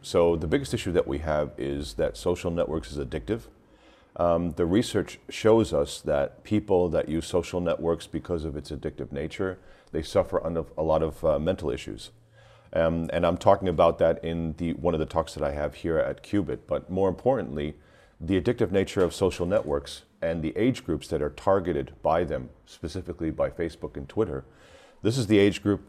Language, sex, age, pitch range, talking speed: Slovak, male, 40-59, 80-95 Hz, 195 wpm